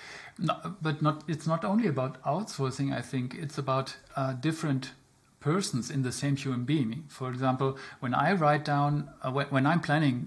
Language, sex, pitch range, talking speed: English, male, 130-155 Hz, 175 wpm